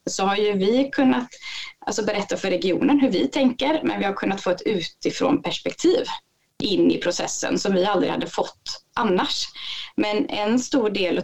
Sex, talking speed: female, 175 wpm